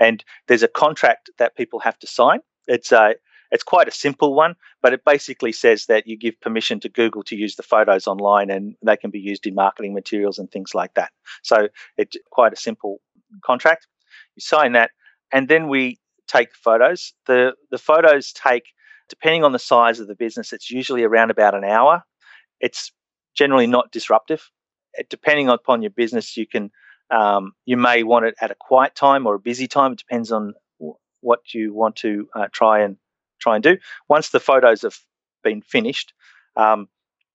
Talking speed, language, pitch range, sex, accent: 190 wpm, English, 105-135 Hz, male, Australian